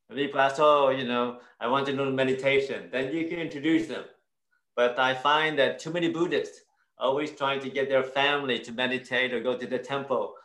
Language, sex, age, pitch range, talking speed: Indonesian, male, 30-49, 125-150 Hz, 200 wpm